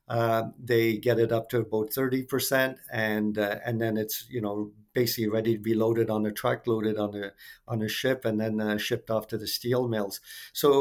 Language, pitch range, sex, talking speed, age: English, 110-125 Hz, male, 220 wpm, 50-69